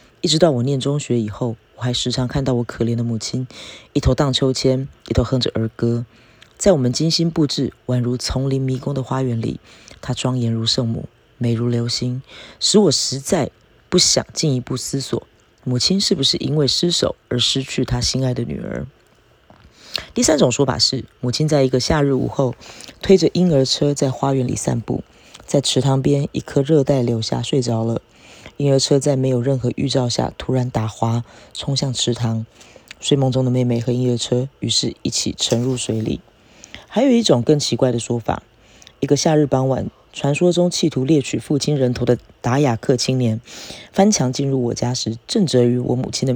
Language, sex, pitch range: Chinese, female, 120-140 Hz